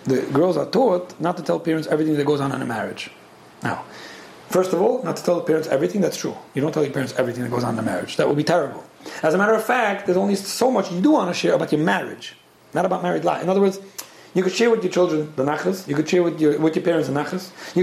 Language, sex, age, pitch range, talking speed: English, male, 40-59, 145-185 Hz, 285 wpm